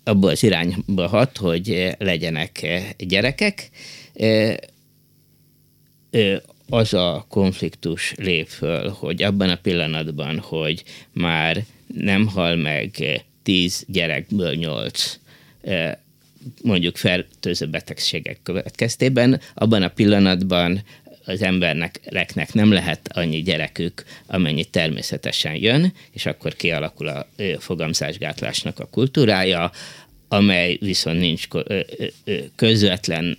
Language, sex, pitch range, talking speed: Hungarian, male, 90-120 Hz, 90 wpm